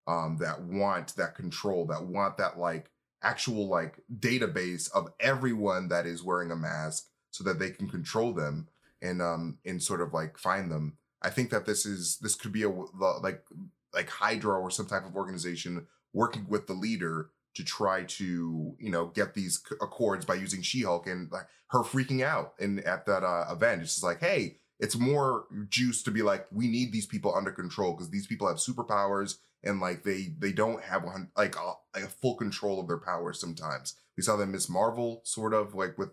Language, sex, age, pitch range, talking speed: English, male, 20-39, 85-110 Hz, 205 wpm